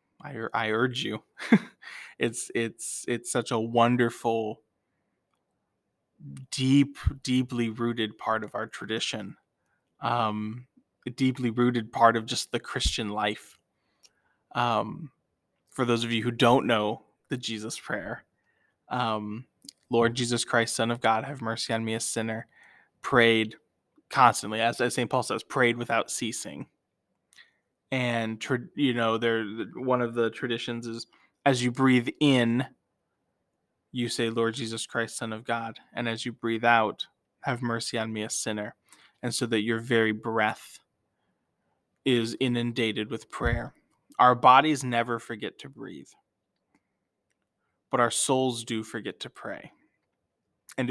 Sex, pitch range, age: male, 115-125 Hz, 20-39